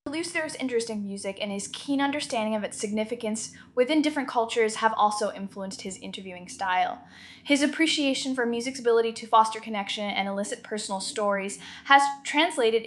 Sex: female